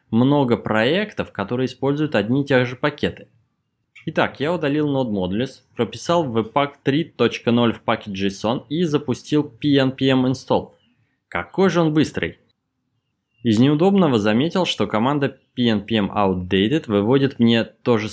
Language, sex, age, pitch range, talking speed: Russian, male, 20-39, 110-145 Hz, 125 wpm